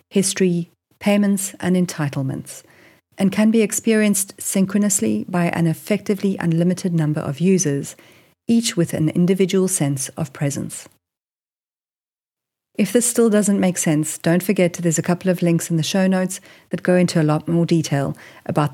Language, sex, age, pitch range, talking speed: English, female, 40-59, 155-195 Hz, 155 wpm